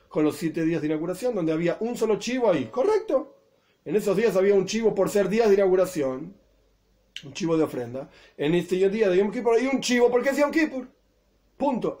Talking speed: 210 wpm